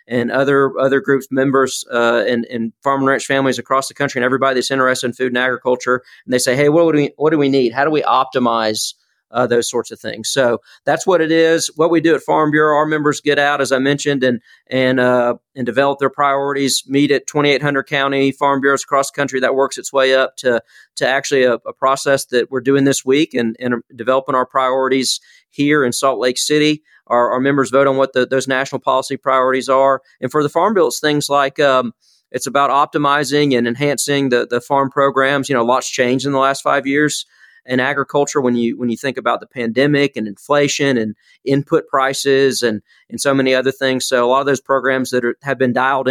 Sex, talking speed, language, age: male, 230 wpm, English, 40-59